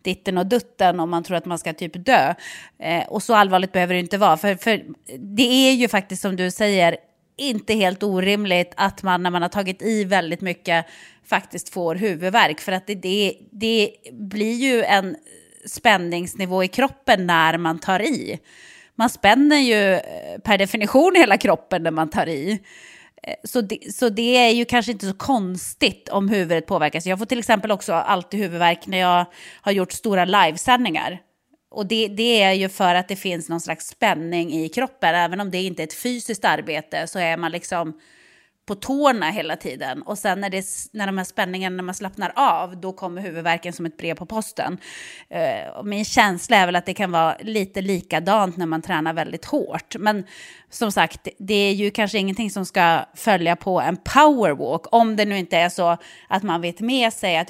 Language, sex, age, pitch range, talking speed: English, female, 30-49, 175-215 Hz, 190 wpm